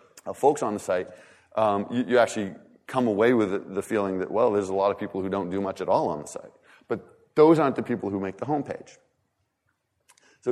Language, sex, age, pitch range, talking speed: English, male, 30-49, 110-165 Hz, 235 wpm